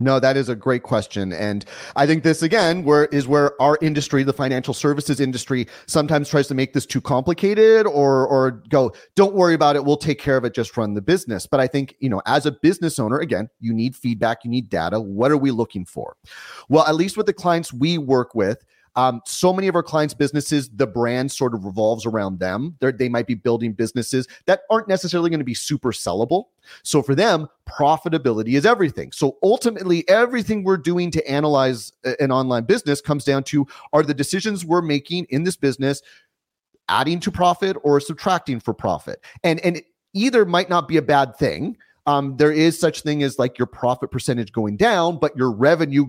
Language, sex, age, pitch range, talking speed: English, male, 30-49, 125-160 Hz, 205 wpm